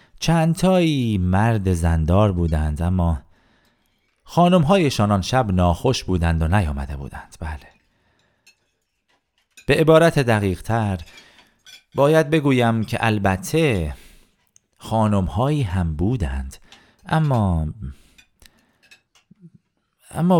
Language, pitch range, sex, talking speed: Persian, 85-130 Hz, male, 75 wpm